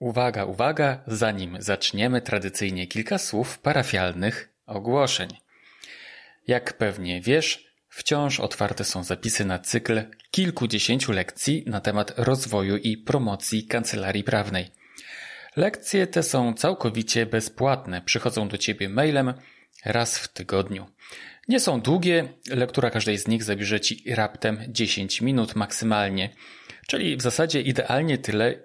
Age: 30-49